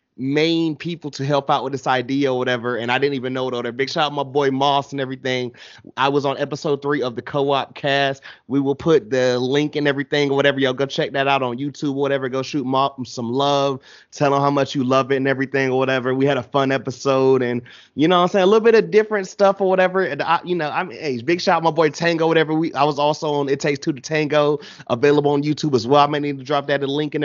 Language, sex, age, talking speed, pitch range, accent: English, male, 30-49, 280 wpm, 130-150 Hz, American